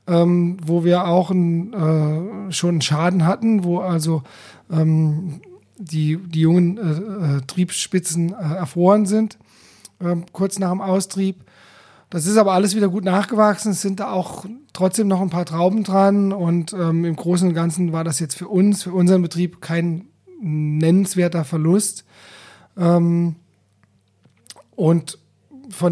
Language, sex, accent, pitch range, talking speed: German, male, German, 170-195 Hz, 145 wpm